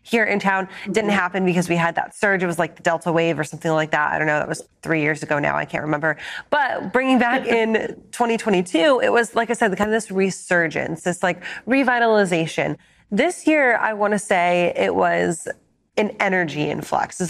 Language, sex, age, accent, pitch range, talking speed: English, female, 30-49, American, 160-210 Hz, 215 wpm